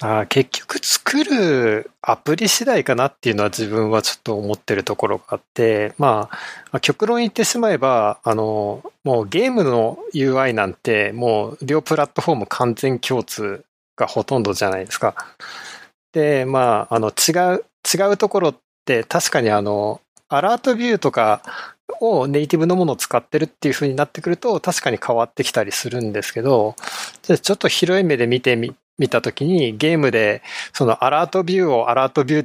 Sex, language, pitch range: male, Japanese, 120-175 Hz